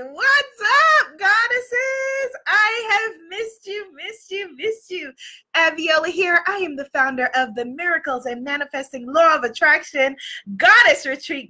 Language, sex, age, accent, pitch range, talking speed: English, female, 20-39, American, 225-335 Hz, 140 wpm